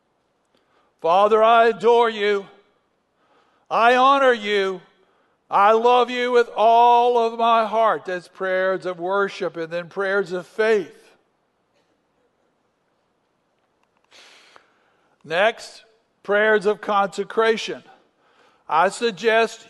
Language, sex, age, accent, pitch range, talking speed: English, male, 60-79, American, 195-240 Hz, 90 wpm